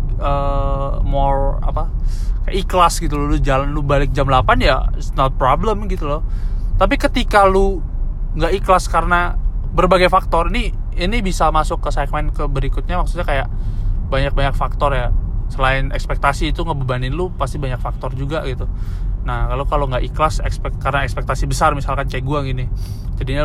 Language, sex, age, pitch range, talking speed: Indonesian, male, 20-39, 125-145 Hz, 165 wpm